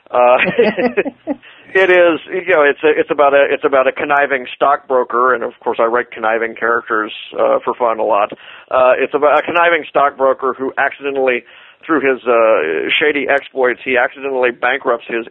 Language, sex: English, male